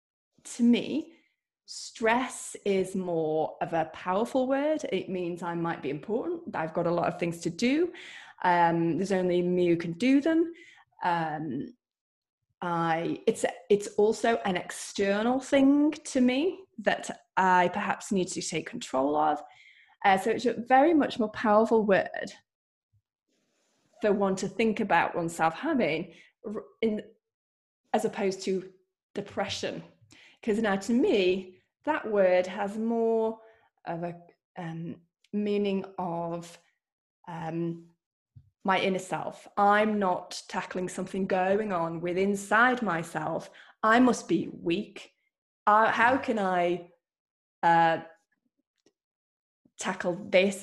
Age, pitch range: 20-39, 175-235 Hz